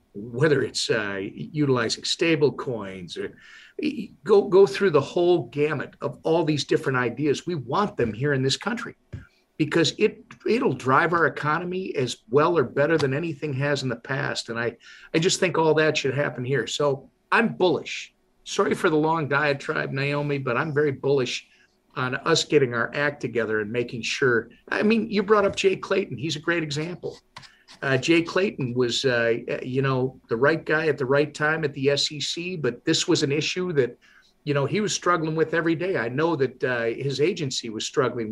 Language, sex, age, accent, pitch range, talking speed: English, male, 50-69, American, 135-175 Hz, 195 wpm